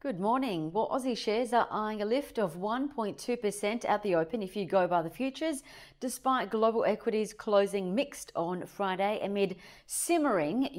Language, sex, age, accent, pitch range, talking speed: English, female, 40-59, Australian, 185-235 Hz, 160 wpm